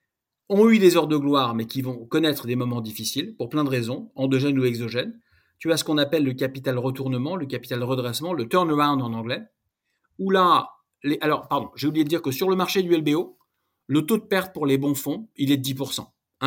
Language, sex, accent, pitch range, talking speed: French, male, French, 135-190 Hz, 225 wpm